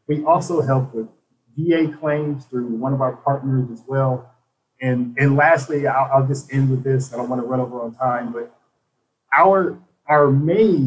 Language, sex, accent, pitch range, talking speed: English, male, American, 125-155 Hz, 190 wpm